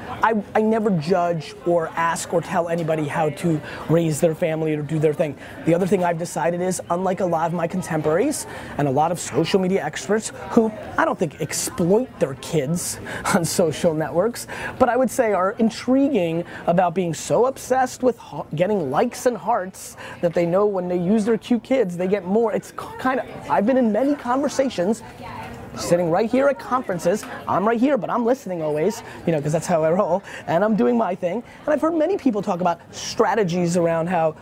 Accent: American